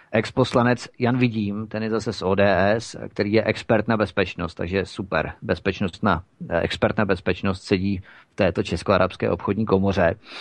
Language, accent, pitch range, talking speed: Czech, native, 105-125 Hz, 155 wpm